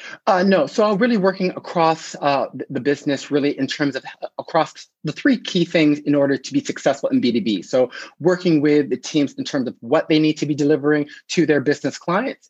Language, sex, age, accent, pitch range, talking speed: English, male, 30-49, American, 130-160 Hz, 210 wpm